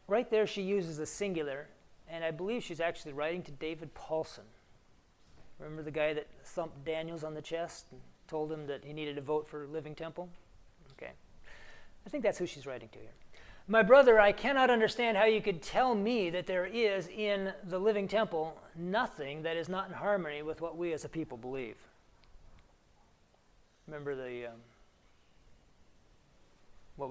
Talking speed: 175 wpm